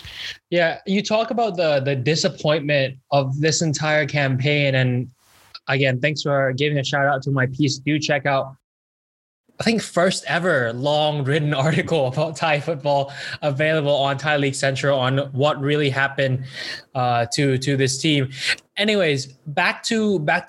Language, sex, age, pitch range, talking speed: English, male, 10-29, 140-175 Hz, 155 wpm